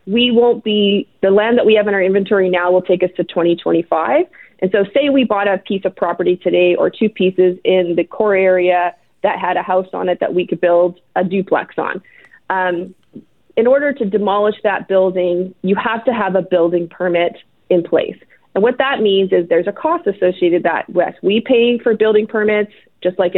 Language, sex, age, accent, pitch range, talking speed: English, female, 30-49, American, 180-225 Hz, 210 wpm